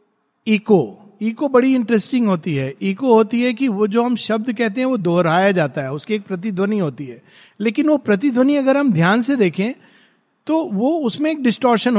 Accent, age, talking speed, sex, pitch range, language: native, 50-69, 180 wpm, male, 170-225 Hz, Hindi